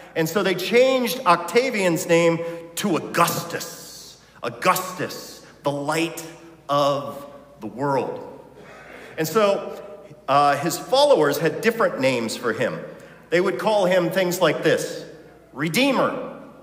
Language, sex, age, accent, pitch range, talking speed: English, male, 40-59, American, 180-270 Hz, 115 wpm